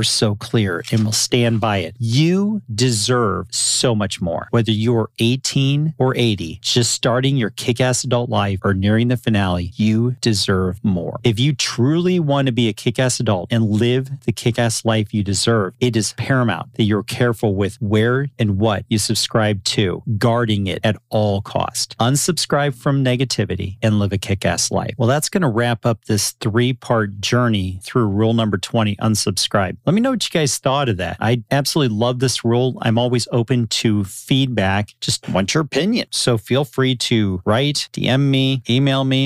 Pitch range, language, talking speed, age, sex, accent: 105-135 Hz, English, 180 wpm, 40-59, male, American